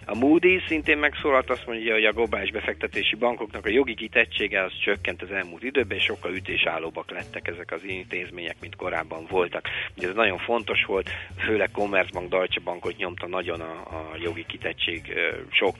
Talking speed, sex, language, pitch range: 170 wpm, male, Hungarian, 90-115 Hz